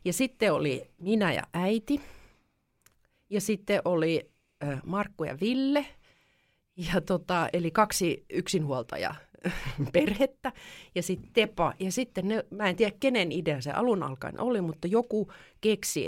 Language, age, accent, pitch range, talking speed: Finnish, 30-49, native, 145-210 Hz, 130 wpm